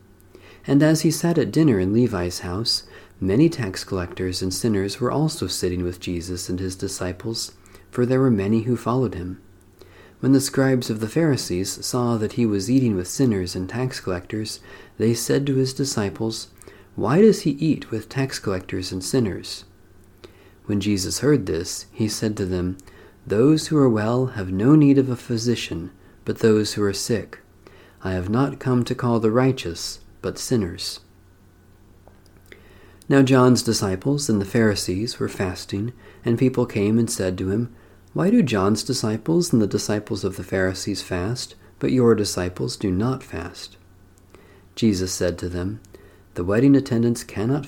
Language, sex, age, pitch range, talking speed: English, male, 40-59, 95-125 Hz, 165 wpm